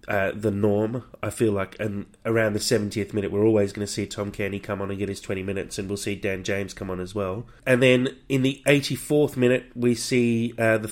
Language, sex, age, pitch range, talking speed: English, male, 30-49, 100-120 Hz, 240 wpm